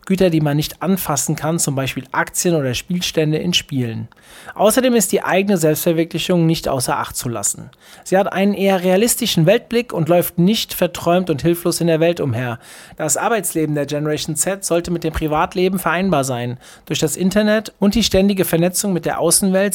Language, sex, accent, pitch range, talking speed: German, male, German, 155-190 Hz, 180 wpm